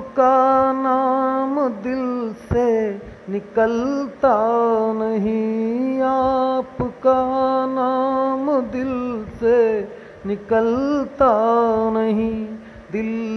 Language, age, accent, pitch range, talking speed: Hindi, 30-49, native, 210-265 Hz, 60 wpm